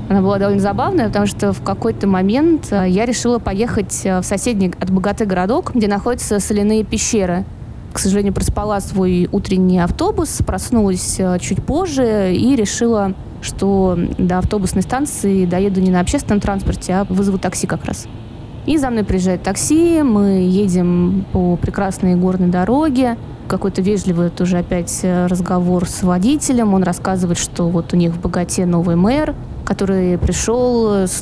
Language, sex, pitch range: Russian, female, 180-215 Hz